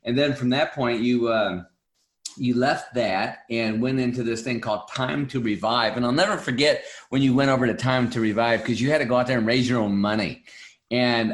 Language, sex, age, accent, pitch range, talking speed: English, male, 40-59, American, 115-140 Hz, 235 wpm